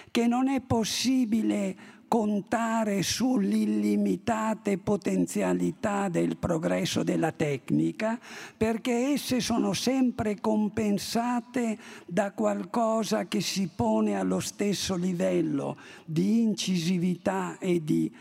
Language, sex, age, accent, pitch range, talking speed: Italian, male, 50-69, native, 175-230 Hz, 90 wpm